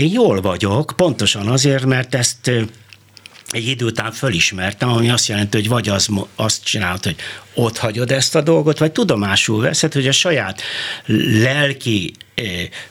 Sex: male